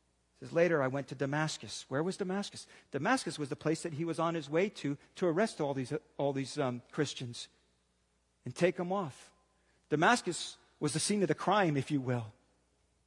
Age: 40-59